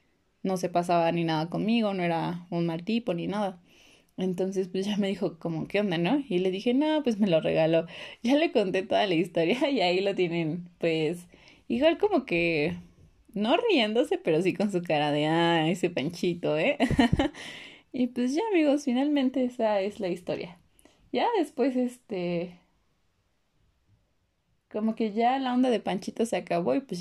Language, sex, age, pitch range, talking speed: Spanish, female, 20-39, 175-250 Hz, 175 wpm